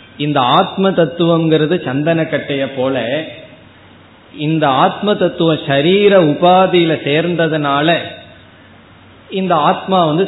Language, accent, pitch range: Tamil, native, 140-175 Hz